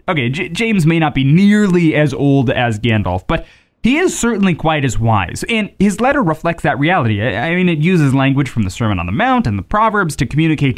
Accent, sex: American, male